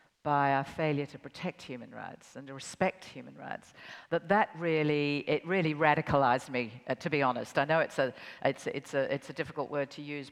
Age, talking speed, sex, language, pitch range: 50-69, 210 wpm, female, English, 140-165 Hz